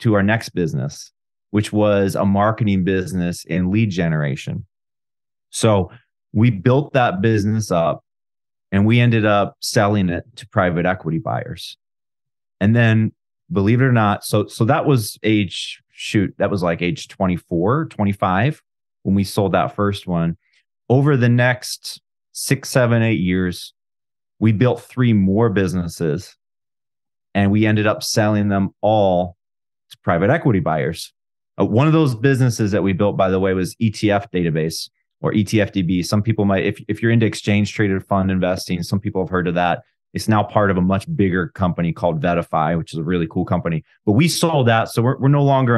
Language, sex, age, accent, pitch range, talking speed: English, male, 30-49, American, 95-115 Hz, 175 wpm